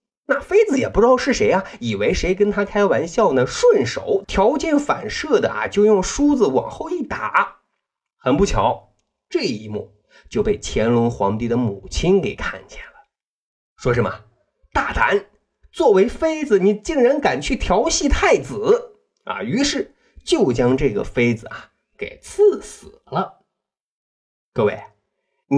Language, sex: Chinese, male